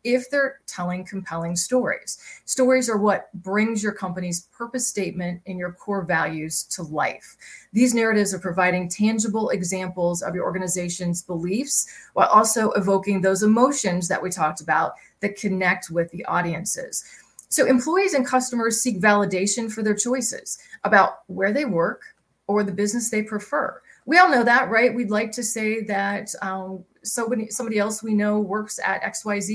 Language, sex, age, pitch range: English, female, 30-49, 185-230 Hz